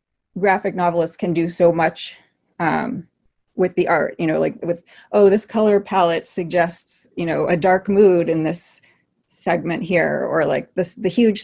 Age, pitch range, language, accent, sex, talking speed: 30-49, 170-205 Hz, English, American, female, 175 wpm